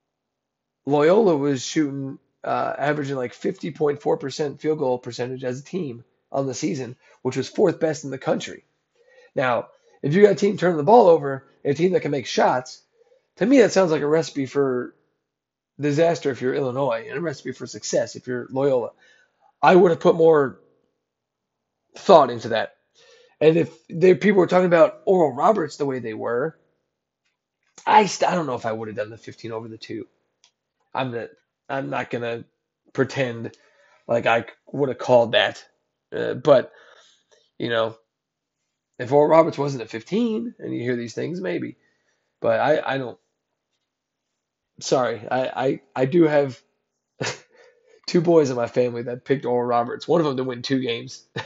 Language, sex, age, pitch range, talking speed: English, male, 30-49, 125-180 Hz, 175 wpm